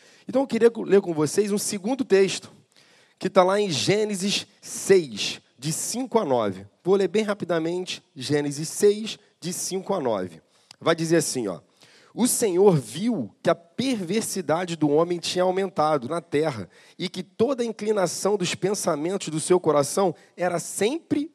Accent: Brazilian